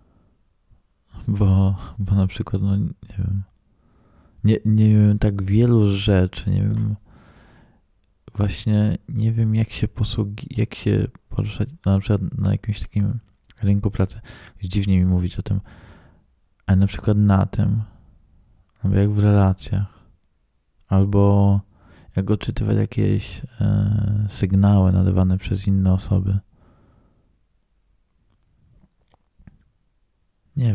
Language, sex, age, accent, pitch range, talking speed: Polish, male, 20-39, native, 95-110 Hz, 110 wpm